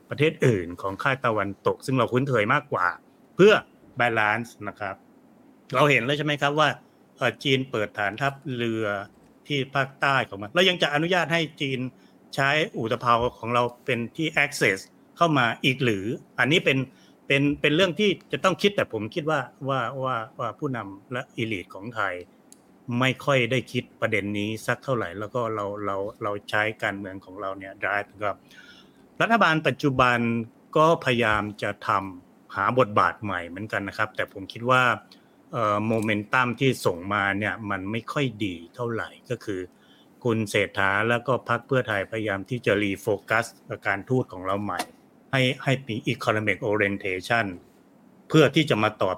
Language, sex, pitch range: Thai, male, 105-135 Hz